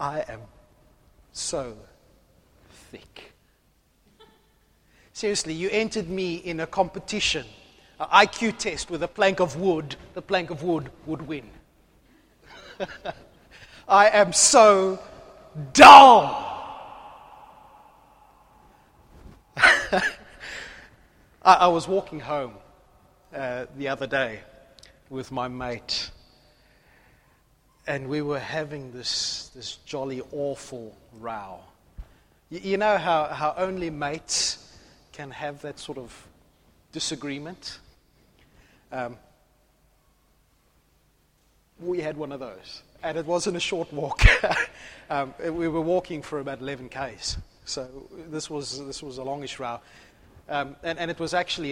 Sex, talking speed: male, 115 wpm